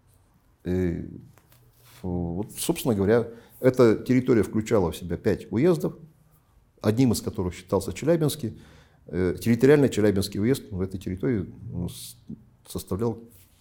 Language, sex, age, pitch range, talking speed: Russian, male, 50-69, 95-125 Hz, 100 wpm